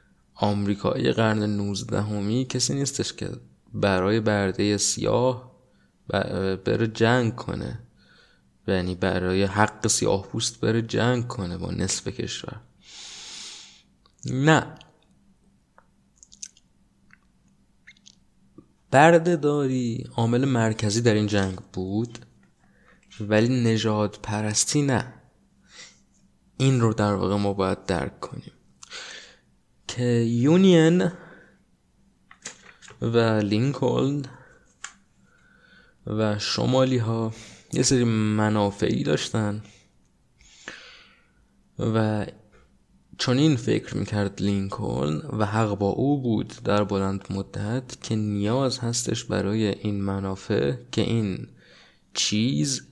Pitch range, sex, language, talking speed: 100-125 Hz, male, Persian, 85 wpm